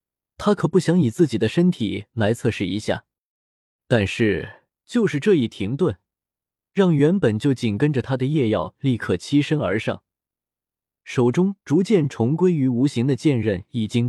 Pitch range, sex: 105-155 Hz, male